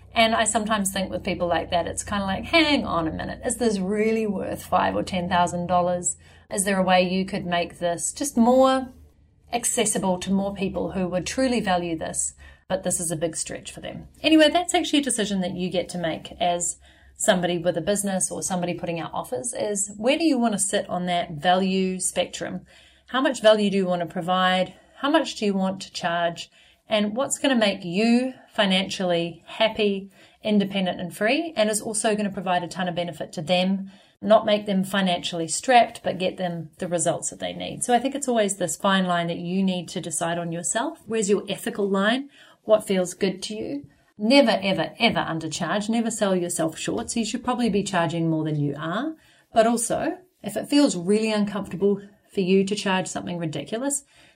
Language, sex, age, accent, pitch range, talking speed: English, female, 30-49, Australian, 175-220 Hz, 205 wpm